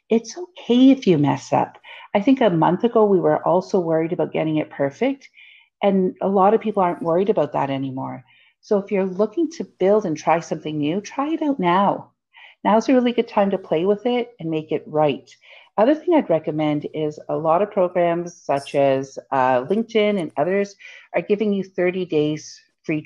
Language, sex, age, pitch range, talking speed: English, female, 50-69, 150-210 Hz, 200 wpm